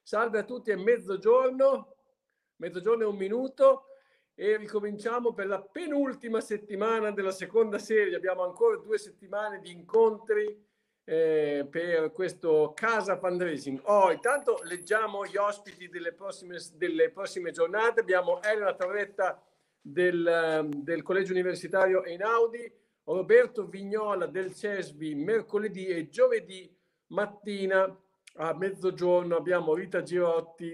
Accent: native